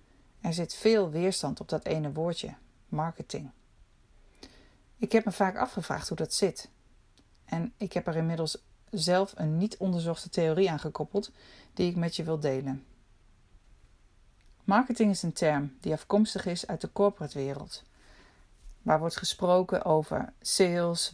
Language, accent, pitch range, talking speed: Dutch, Dutch, 145-195 Hz, 145 wpm